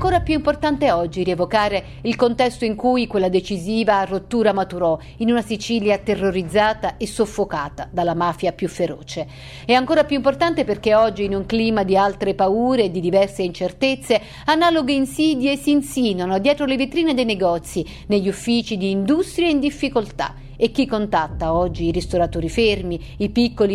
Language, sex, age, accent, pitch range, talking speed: Italian, female, 50-69, native, 195-270 Hz, 160 wpm